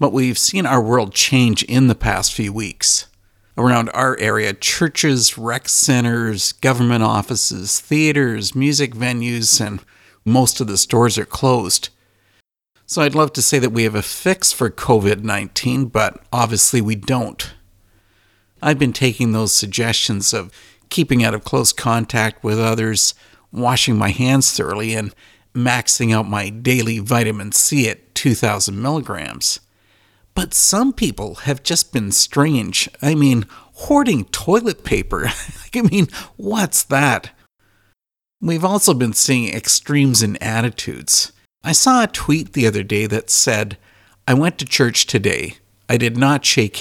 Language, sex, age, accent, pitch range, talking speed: English, male, 50-69, American, 105-135 Hz, 145 wpm